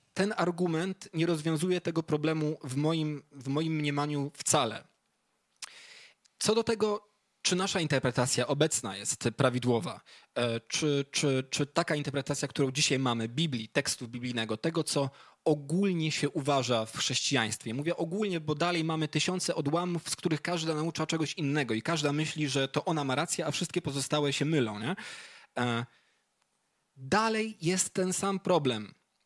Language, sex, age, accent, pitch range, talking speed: Polish, male, 20-39, native, 135-180 Hz, 140 wpm